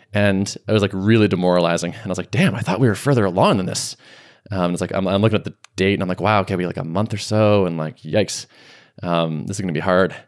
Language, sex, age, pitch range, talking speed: English, male, 20-39, 95-125 Hz, 290 wpm